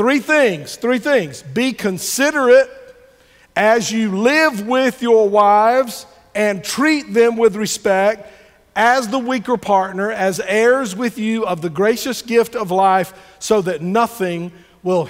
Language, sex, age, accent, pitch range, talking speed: English, male, 50-69, American, 185-235 Hz, 140 wpm